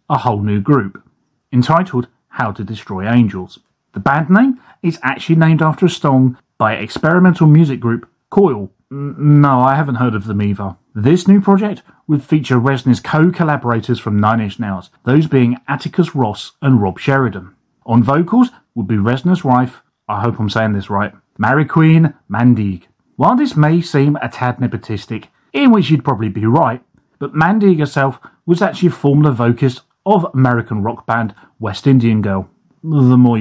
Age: 30-49